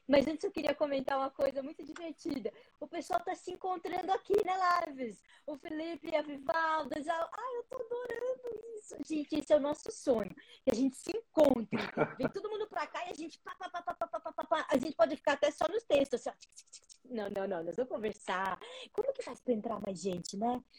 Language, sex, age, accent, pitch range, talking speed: Portuguese, female, 20-39, Brazilian, 235-320 Hz, 230 wpm